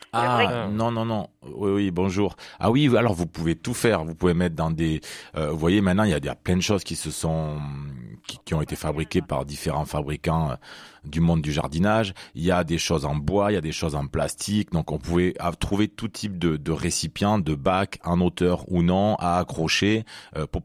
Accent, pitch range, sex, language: French, 80-100 Hz, male, French